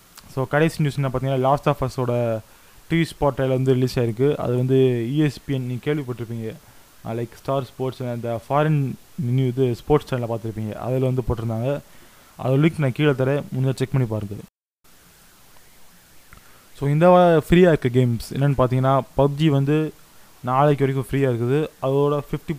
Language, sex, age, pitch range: Tamil, male, 20-39, 125-145 Hz